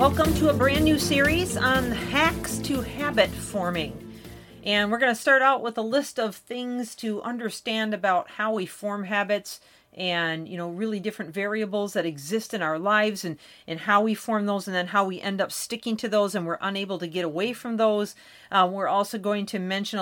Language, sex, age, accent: English, female, 40-59, American